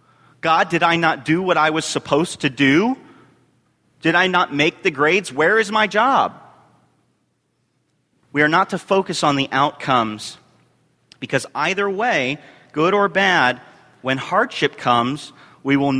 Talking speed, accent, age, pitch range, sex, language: 150 wpm, American, 40-59, 125-155 Hz, male, English